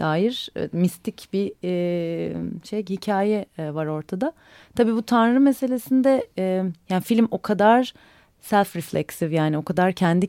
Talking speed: 140 wpm